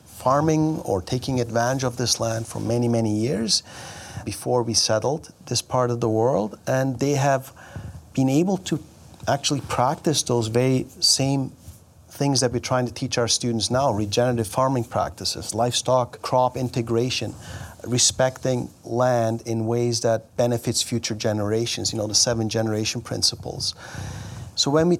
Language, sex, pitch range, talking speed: English, male, 110-130 Hz, 150 wpm